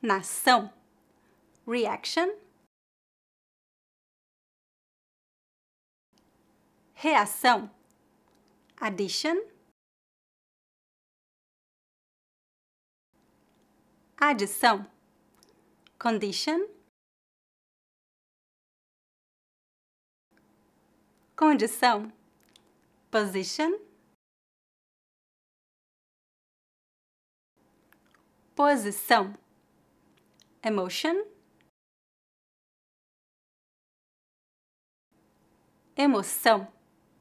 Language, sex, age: English, female, 30-49